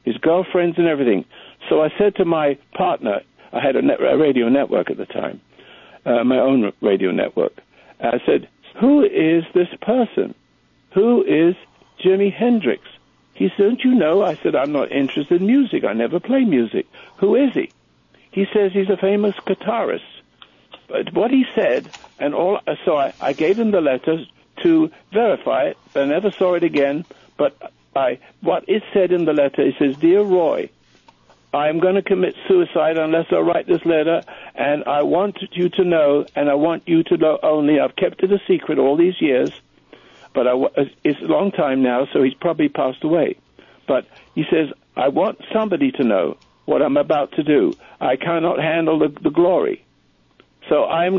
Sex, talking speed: male, 185 wpm